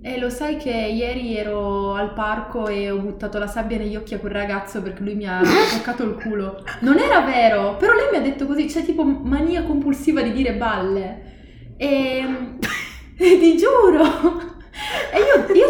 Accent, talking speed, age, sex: native, 190 wpm, 20-39, female